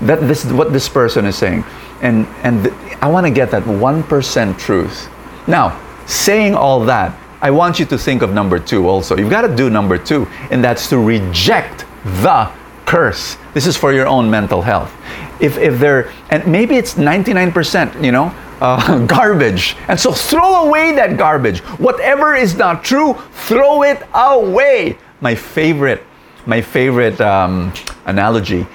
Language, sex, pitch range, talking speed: English, male, 130-205 Hz, 165 wpm